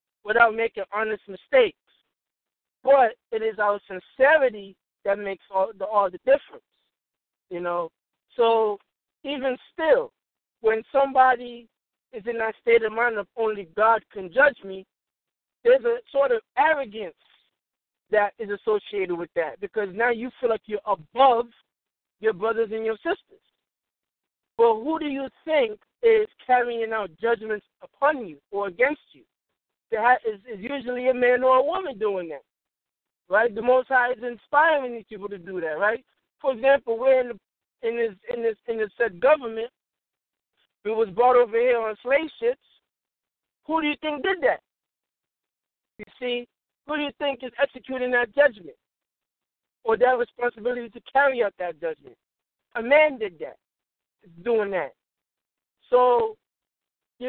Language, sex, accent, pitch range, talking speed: English, male, American, 215-280 Hz, 150 wpm